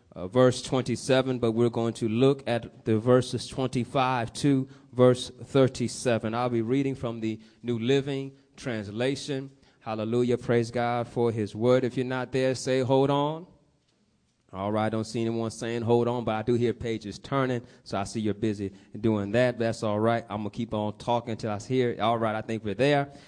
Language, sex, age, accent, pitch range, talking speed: English, male, 20-39, American, 115-145 Hz, 200 wpm